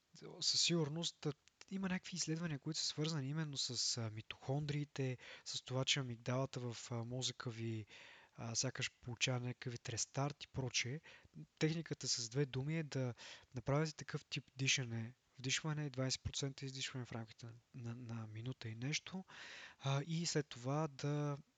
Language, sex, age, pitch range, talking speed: Bulgarian, male, 20-39, 120-145 Hz, 130 wpm